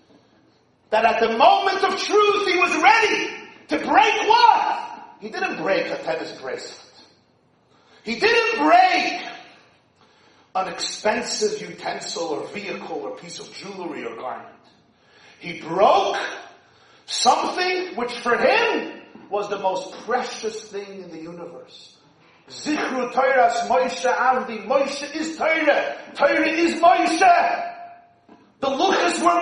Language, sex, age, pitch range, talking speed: English, male, 40-59, 225-380 Hz, 120 wpm